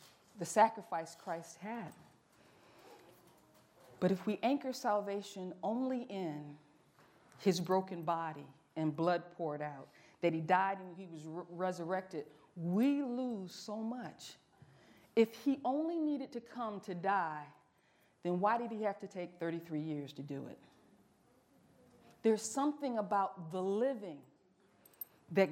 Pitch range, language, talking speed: 175-245 Hz, English, 130 wpm